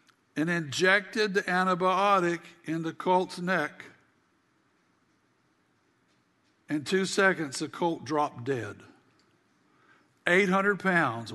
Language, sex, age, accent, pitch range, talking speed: English, male, 60-79, American, 150-205 Hz, 90 wpm